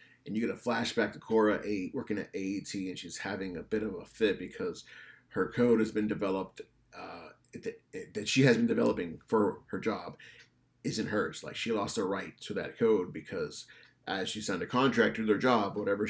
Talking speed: 200 wpm